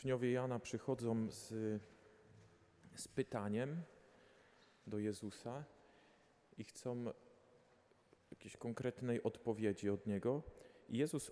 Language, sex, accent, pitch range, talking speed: Polish, male, native, 105-125 Hz, 85 wpm